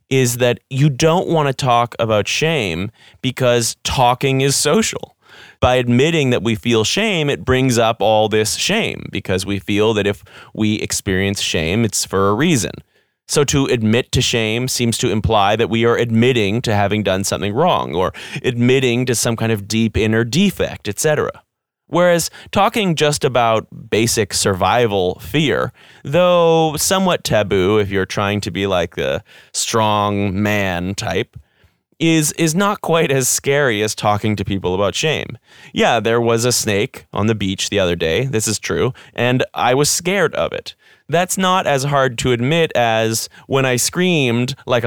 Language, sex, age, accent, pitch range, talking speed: English, male, 30-49, American, 105-140 Hz, 170 wpm